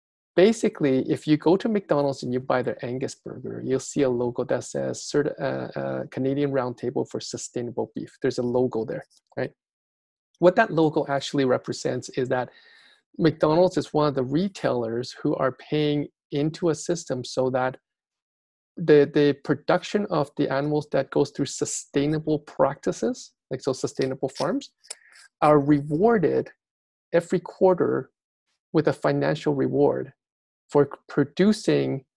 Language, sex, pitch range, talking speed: English, male, 130-170 Hz, 140 wpm